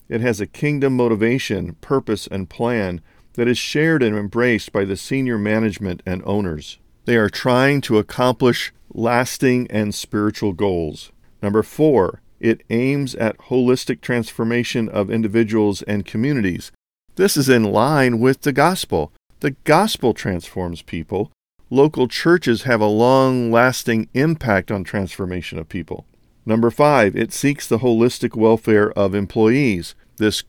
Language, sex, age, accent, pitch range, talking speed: English, male, 50-69, American, 100-130 Hz, 140 wpm